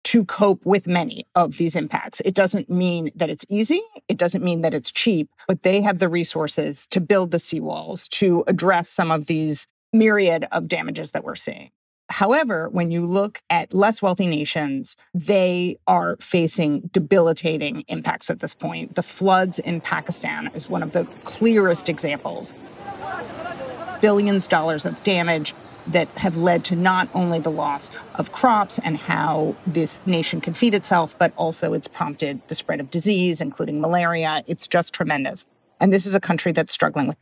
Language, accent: English, American